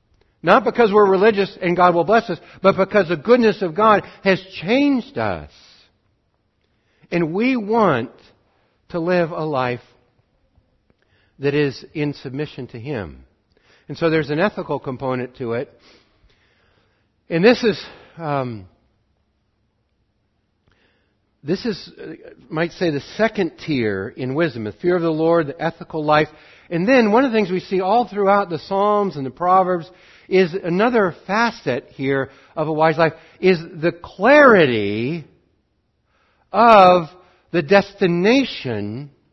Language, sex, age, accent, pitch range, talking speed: English, male, 60-79, American, 120-195 Hz, 135 wpm